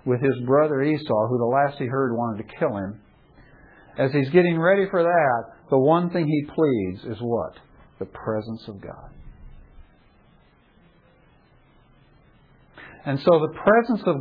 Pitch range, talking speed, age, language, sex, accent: 120-165 Hz, 150 wpm, 50-69, English, male, American